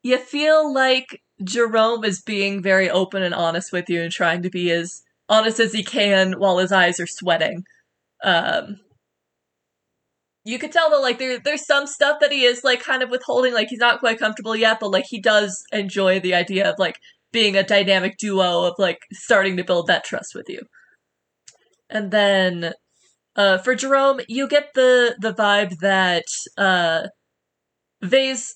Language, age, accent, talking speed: English, 20-39, American, 175 wpm